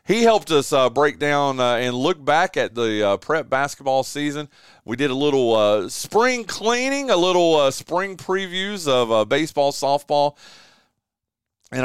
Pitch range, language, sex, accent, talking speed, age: 110-145 Hz, English, male, American, 165 wpm, 40-59